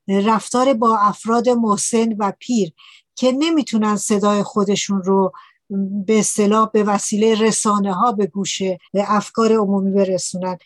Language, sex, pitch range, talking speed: Persian, female, 205-265 Hz, 130 wpm